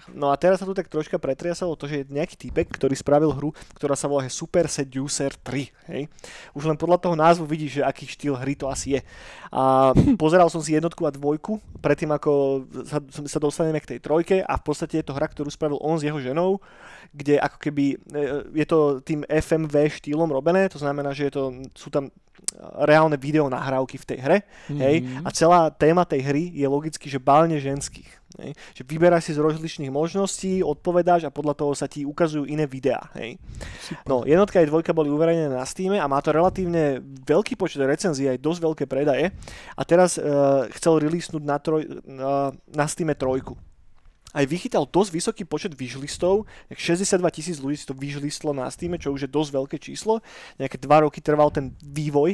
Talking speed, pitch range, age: 190 wpm, 140-165 Hz, 20-39